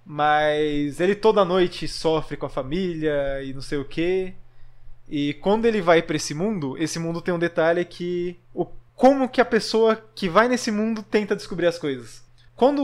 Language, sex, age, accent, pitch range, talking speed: Portuguese, male, 20-39, Brazilian, 145-200 Hz, 185 wpm